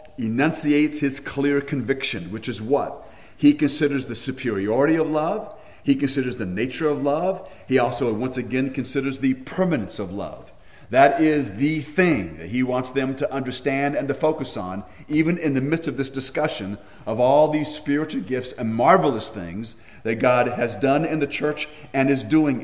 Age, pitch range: 40-59, 105-145 Hz